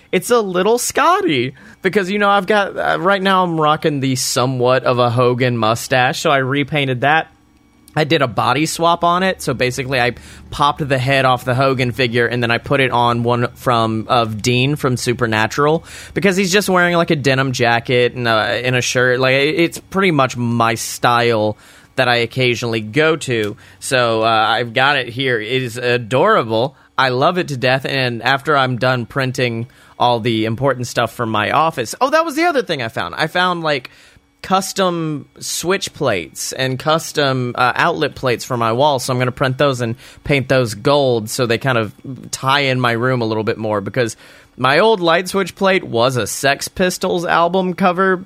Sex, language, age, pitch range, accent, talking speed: male, English, 30-49, 120-165 Hz, American, 200 wpm